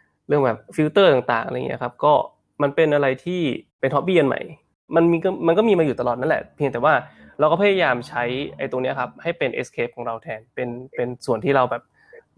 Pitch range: 120-150 Hz